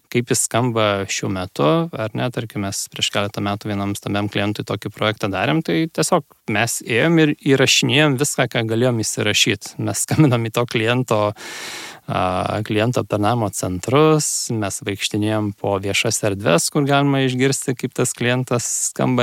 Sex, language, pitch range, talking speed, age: male, English, 105-130 Hz, 150 wpm, 20-39